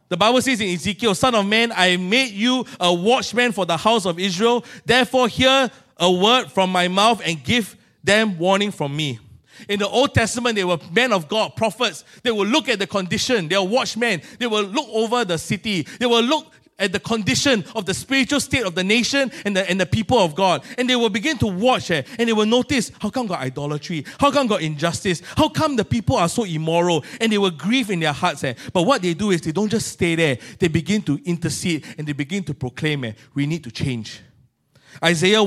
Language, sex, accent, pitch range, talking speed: English, male, Malaysian, 135-205 Hz, 230 wpm